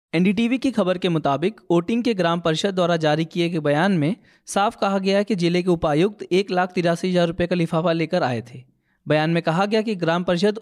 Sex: male